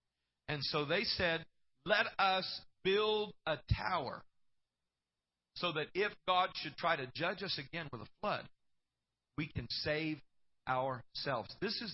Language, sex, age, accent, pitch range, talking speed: English, male, 50-69, American, 135-185 Hz, 140 wpm